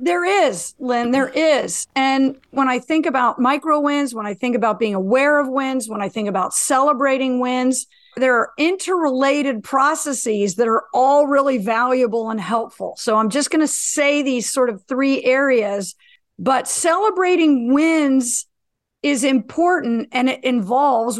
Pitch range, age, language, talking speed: 250-315 Hz, 50-69, English, 160 wpm